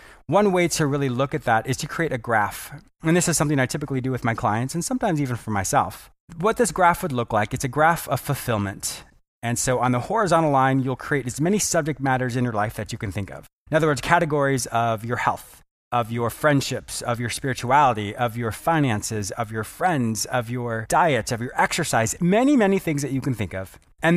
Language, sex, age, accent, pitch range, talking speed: English, male, 30-49, American, 120-170 Hz, 230 wpm